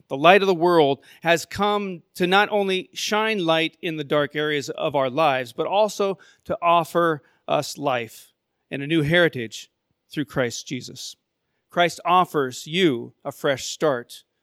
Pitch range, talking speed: 130-160 Hz, 160 wpm